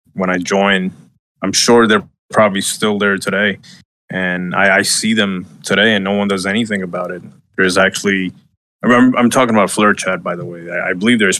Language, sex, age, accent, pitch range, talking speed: English, male, 20-39, American, 95-135 Hz, 190 wpm